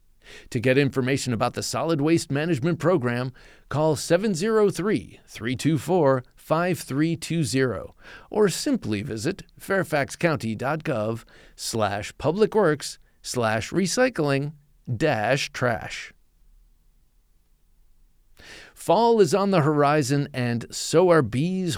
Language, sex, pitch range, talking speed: English, male, 120-165 Hz, 85 wpm